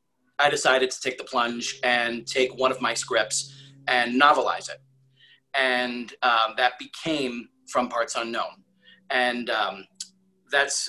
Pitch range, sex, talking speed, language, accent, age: 120-135 Hz, male, 140 wpm, English, American, 30-49